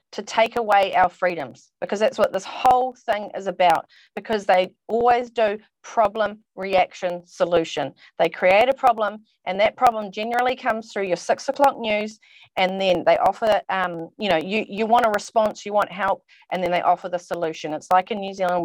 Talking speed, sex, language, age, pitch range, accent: 195 wpm, female, English, 30-49, 180-225 Hz, Australian